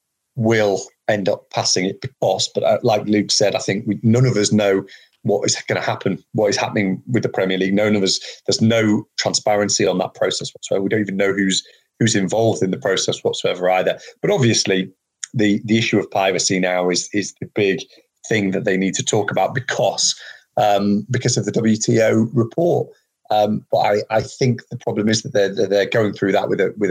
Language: English